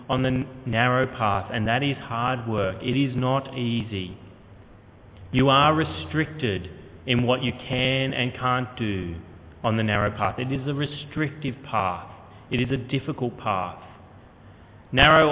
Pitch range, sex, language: 110-150 Hz, male, English